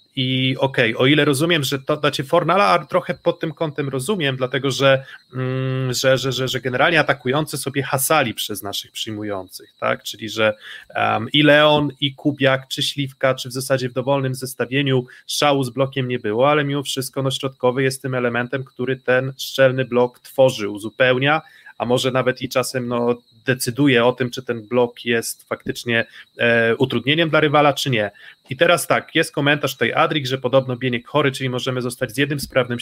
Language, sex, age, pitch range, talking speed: Polish, male, 30-49, 125-145 Hz, 185 wpm